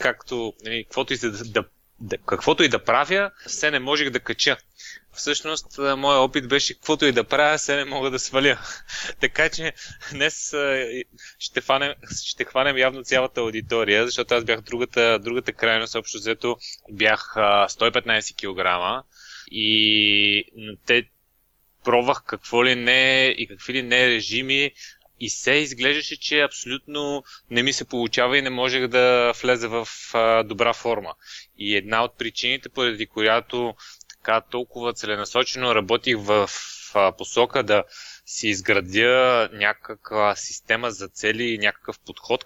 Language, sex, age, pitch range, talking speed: Bulgarian, male, 20-39, 110-130 Hz, 135 wpm